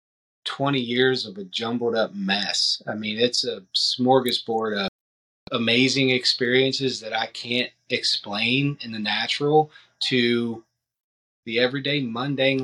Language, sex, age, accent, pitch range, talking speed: English, male, 30-49, American, 110-135 Hz, 125 wpm